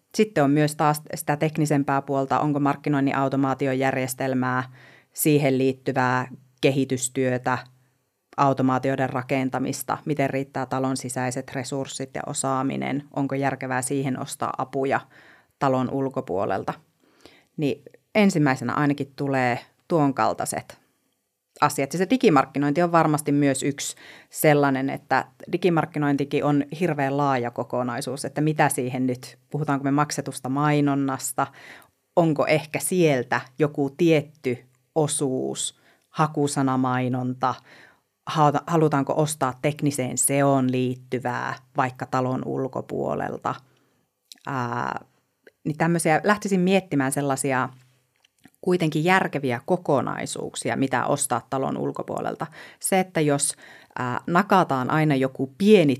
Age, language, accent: 30-49, Finnish, native